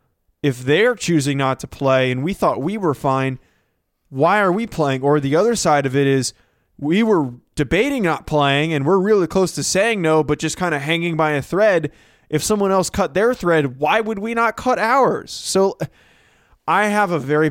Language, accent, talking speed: English, American, 205 wpm